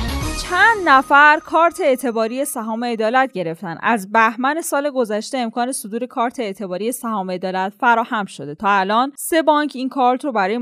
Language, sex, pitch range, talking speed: Persian, female, 220-290 Hz, 155 wpm